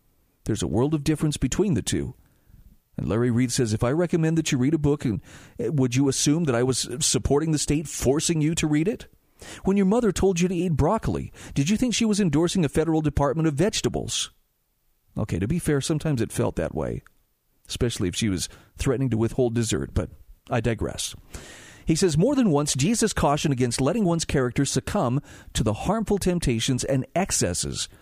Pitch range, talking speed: 120-165 Hz, 195 wpm